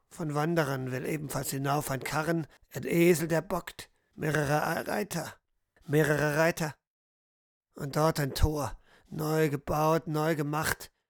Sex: male